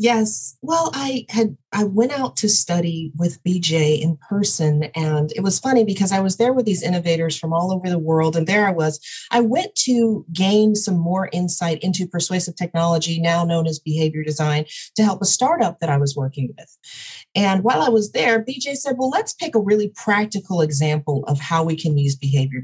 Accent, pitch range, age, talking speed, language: American, 160-225 Hz, 40-59, 205 wpm, English